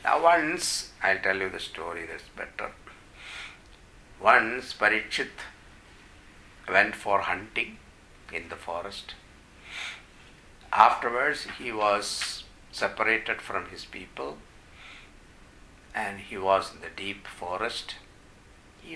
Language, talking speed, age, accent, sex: English, 100 wpm, 60-79, Indian, male